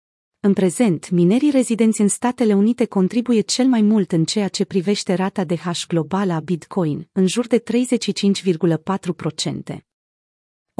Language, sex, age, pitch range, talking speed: Romanian, female, 30-49, 180-220 Hz, 140 wpm